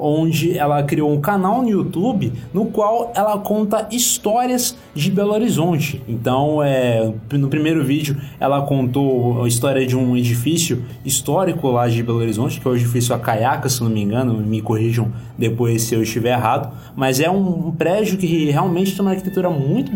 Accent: Brazilian